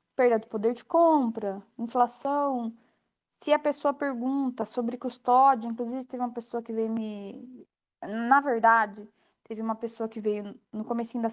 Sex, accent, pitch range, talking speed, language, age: female, Brazilian, 210-260 Hz, 155 wpm, Portuguese, 20-39